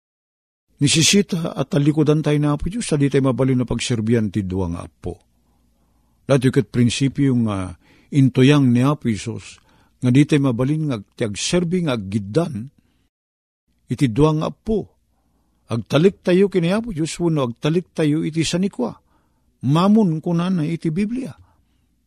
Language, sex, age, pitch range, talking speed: Filipino, male, 50-69, 100-170 Hz, 120 wpm